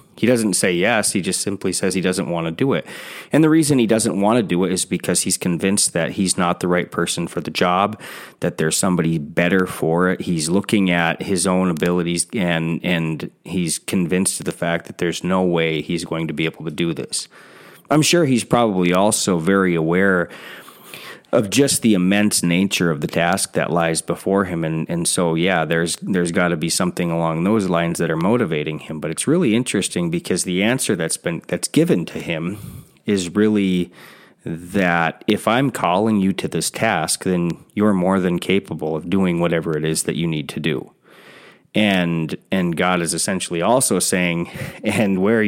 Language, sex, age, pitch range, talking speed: English, male, 30-49, 85-100 Hz, 200 wpm